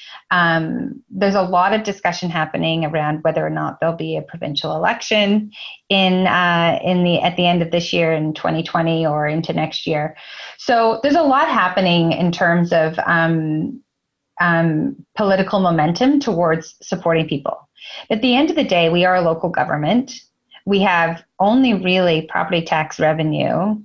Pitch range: 165-200 Hz